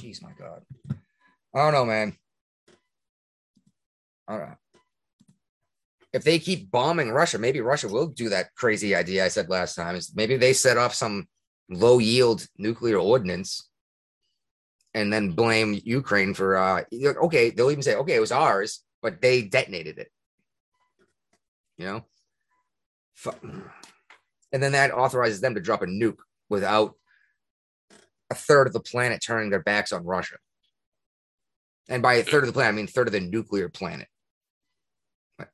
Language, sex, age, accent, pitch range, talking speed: English, male, 30-49, American, 100-135 Hz, 155 wpm